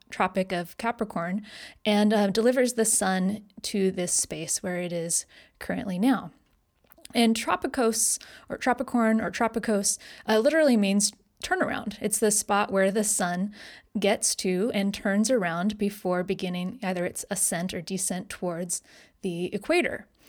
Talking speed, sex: 140 wpm, female